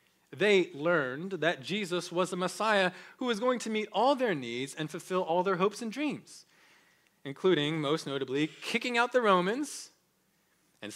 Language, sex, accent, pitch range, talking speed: English, male, American, 160-200 Hz, 165 wpm